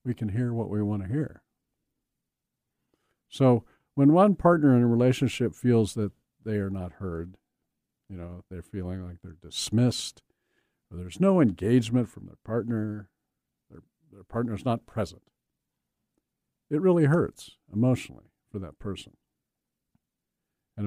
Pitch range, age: 100-140 Hz, 50-69